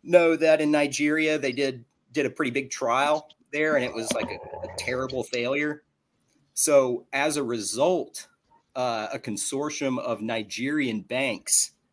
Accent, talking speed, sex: American, 150 wpm, male